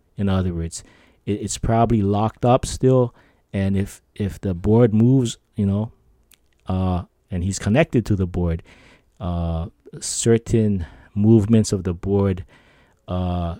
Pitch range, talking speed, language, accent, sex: 90-110 Hz, 130 wpm, English, American, male